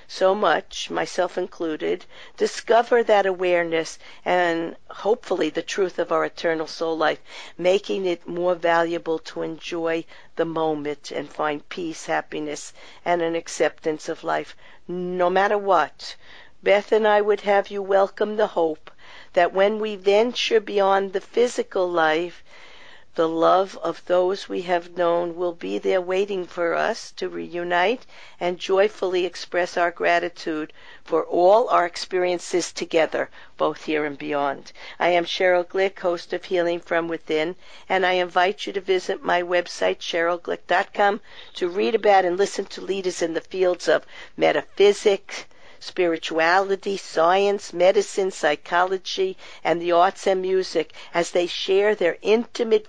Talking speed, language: 145 wpm, English